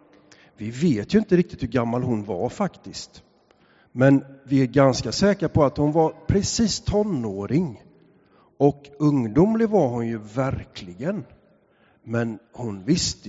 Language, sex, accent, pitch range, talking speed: English, male, Swedish, 125-170 Hz, 135 wpm